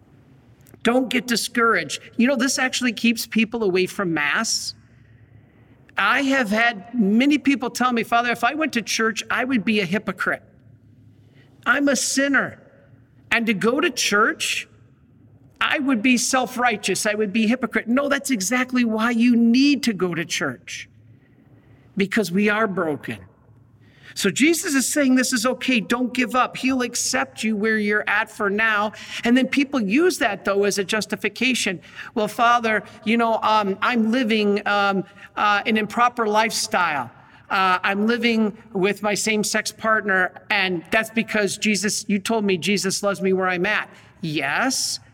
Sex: male